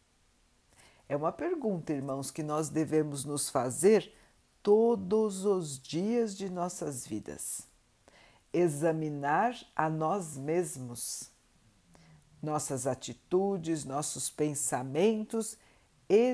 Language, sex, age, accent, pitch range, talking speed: Portuguese, female, 60-79, Brazilian, 130-195 Hz, 90 wpm